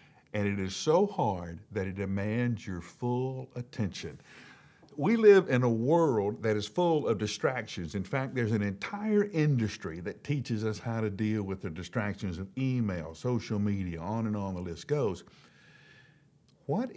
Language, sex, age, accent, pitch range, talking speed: English, male, 60-79, American, 95-130 Hz, 165 wpm